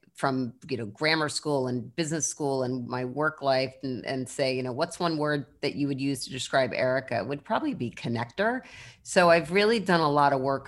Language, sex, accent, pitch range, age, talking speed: English, female, American, 130-160 Hz, 40-59, 225 wpm